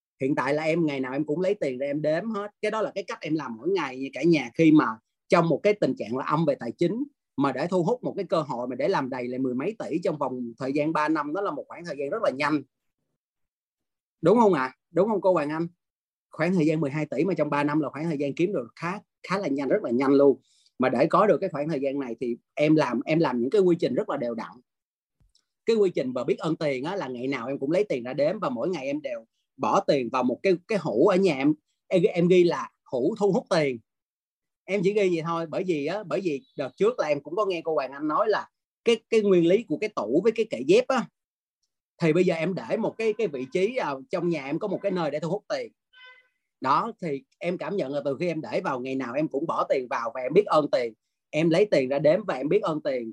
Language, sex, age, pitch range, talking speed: Vietnamese, male, 30-49, 145-205 Hz, 285 wpm